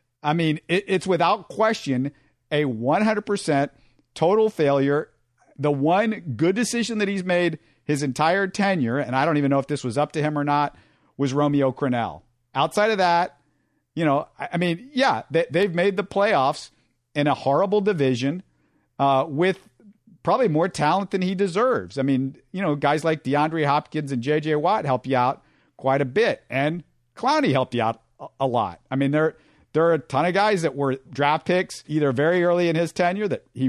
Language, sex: English, male